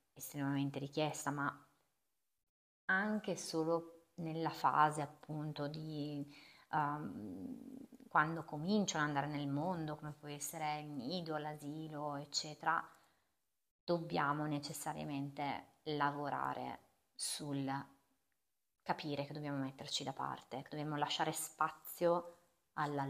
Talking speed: 100 wpm